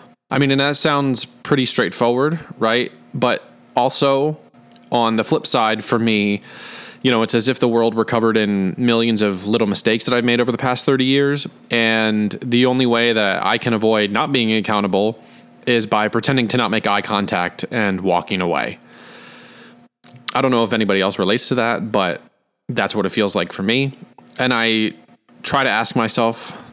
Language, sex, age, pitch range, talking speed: English, male, 20-39, 100-125 Hz, 185 wpm